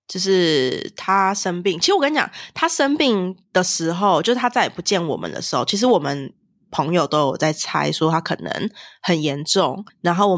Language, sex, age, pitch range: Chinese, female, 20-39, 165-205 Hz